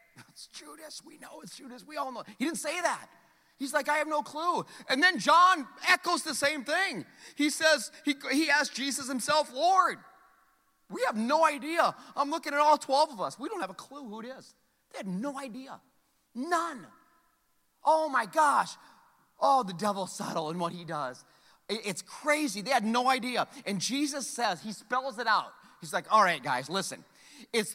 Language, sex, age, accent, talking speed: English, male, 30-49, American, 190 wpm